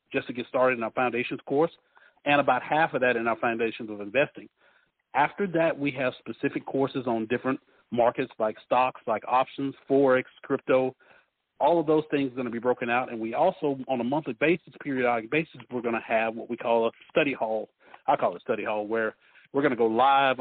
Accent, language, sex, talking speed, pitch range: American, English, male, 215 wpm, 125-155 Hz